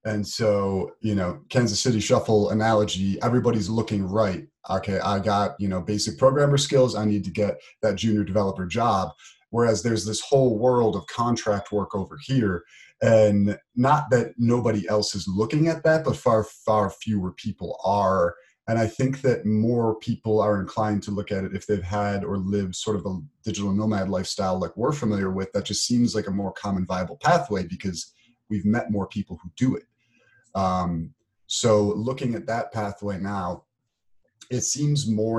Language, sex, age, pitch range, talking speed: English, male, 30-49, 95-115 Hz, 180 wpm